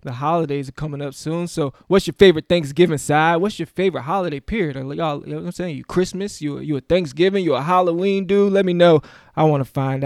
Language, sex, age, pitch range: English, male, 20-39, 140-170 Hz